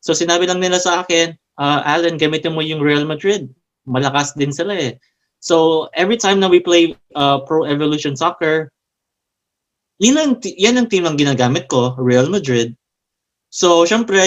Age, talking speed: 20-39, 170 wpm